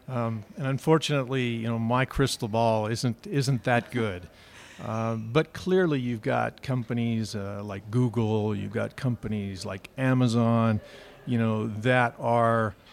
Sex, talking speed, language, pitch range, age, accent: male, 140 wpm, English, 110-130 Hz, 50-69, American